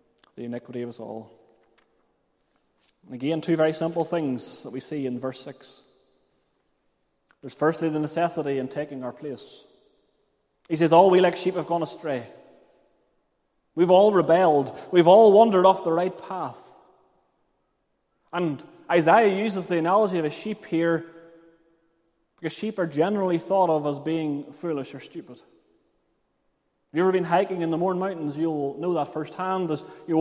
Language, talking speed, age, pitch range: English, 155 wpm, 30-49, 155-190 Hz